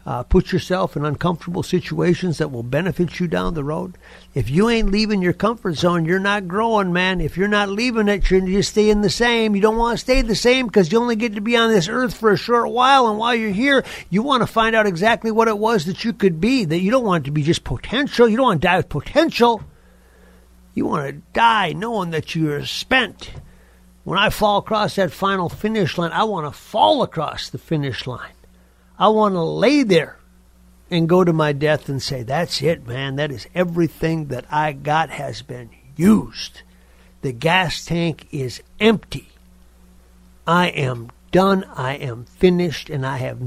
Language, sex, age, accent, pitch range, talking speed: English, male, 50-69, American, 145-210 Hz, 205 wpm